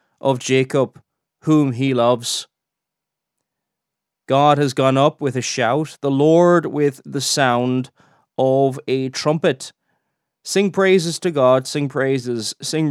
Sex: male